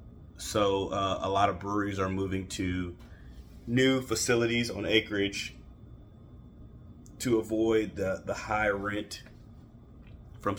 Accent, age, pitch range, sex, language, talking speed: American, 30-49, 90-105 Hz, male, English, 115 wpm